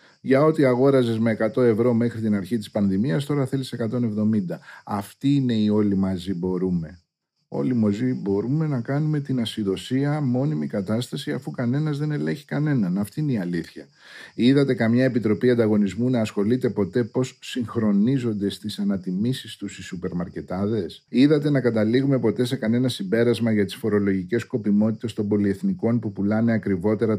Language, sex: Greek, male